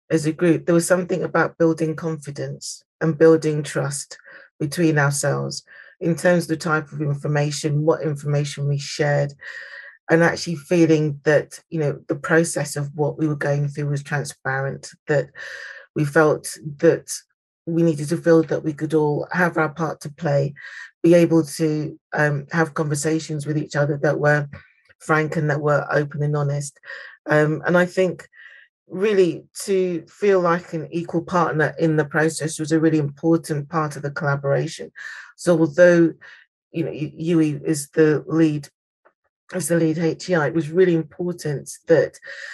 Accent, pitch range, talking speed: British, 145-165 Hz, 160 wpm